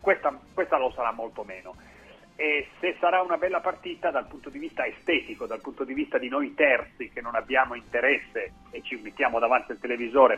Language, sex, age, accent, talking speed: Italian, male, 40-59, native, 195 wpm